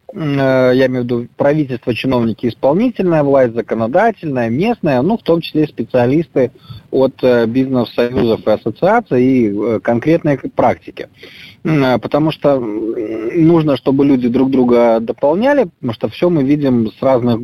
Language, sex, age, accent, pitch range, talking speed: Russian, male, 20-39, native, 120-165 Hz, 125 wpm